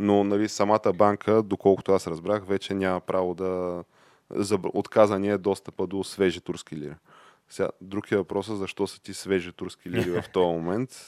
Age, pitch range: 20-39, 90-110 Hz